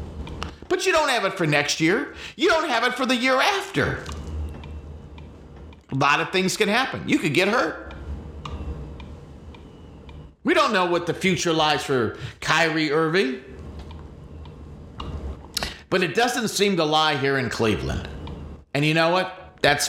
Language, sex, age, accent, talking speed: English, male, 40-59, American, 150 wpm